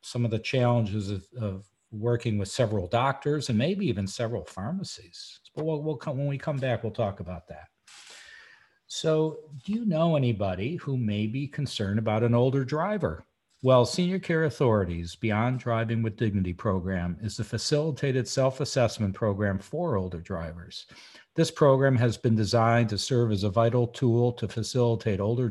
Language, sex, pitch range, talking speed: English, male, 105-130 Hz, 165 wpm